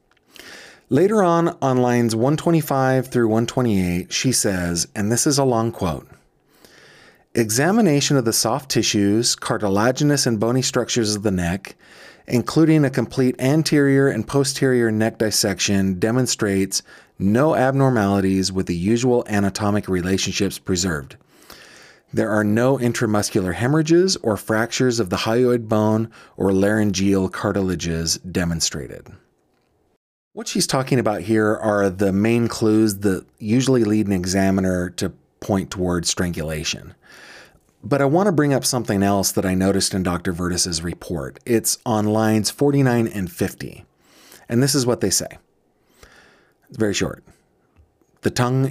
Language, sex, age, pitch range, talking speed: English, male, 30-49, 95-125 Hz, 135 wpm